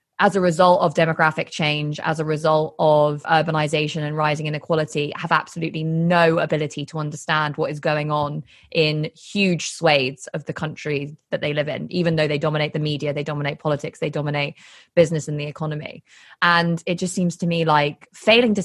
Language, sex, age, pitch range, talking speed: English, female, 20-39, 150-175 Hz, 185 wpm